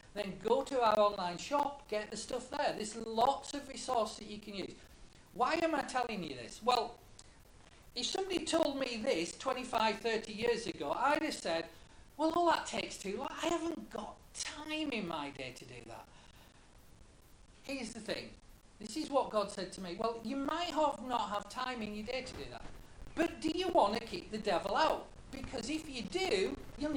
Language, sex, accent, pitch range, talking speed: English, male, British, 210-290 Hz, 200 wpm